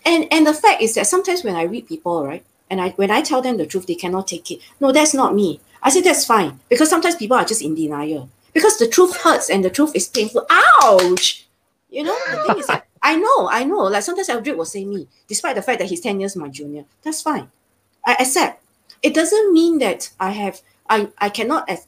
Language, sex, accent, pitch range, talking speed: English, female, Malaysian, 165-255 Hz, 240 wpm